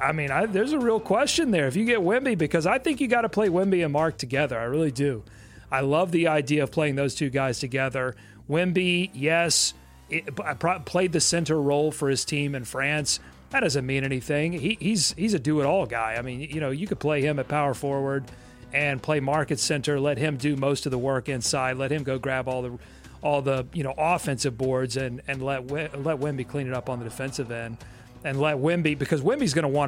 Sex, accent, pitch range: male, American, 130-165 Hz